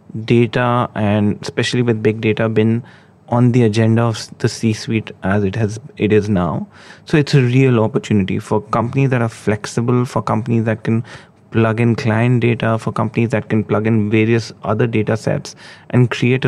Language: English